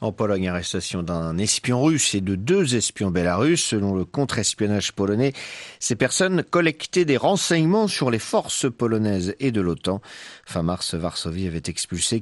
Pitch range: 95-145 Hz